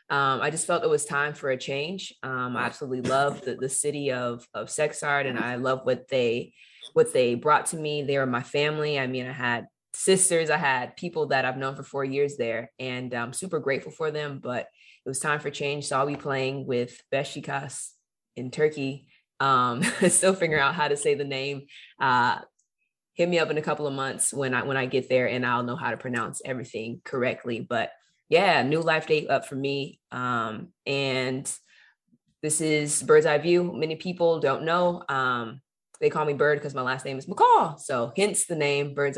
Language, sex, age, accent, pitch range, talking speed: English, female, 20-39, American, 135-160 Hz, 210 wpm